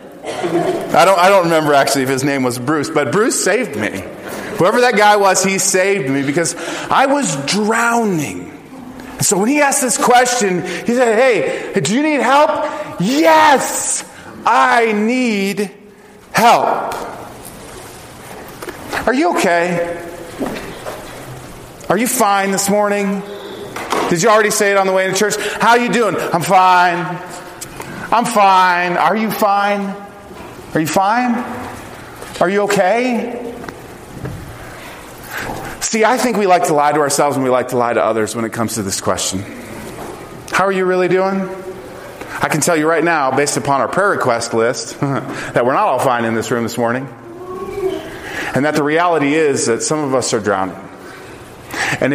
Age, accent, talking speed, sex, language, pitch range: 40-59, American, 160 wpm, male, English, 140-215 Hz